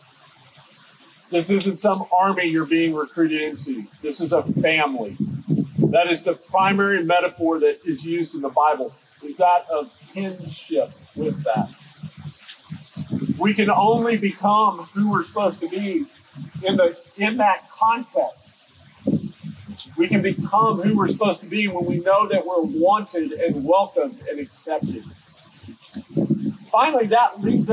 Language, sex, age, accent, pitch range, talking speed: English, male, 40-59, American, 165-220 Hz, 140 wpm